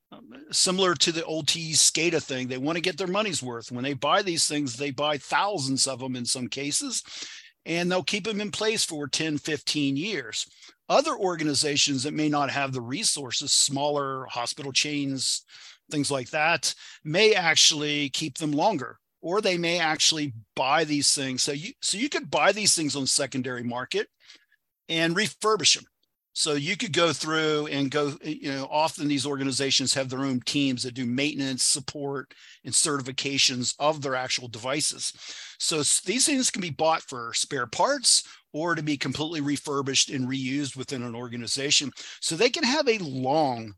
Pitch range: 135-165 Hz